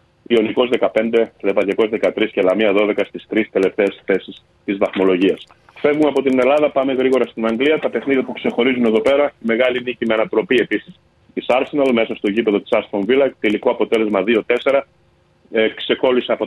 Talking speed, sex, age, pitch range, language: 165 wpm, male, 40-59, 110-130 Hz, Greek